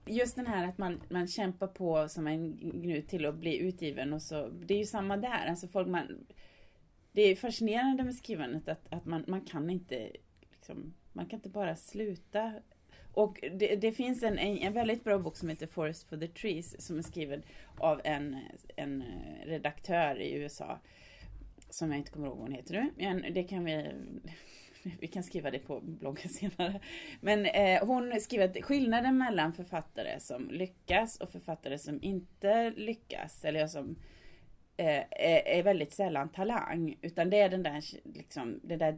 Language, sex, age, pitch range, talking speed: Swedish, female, 30-49, 155-210 Hz, 175 wpm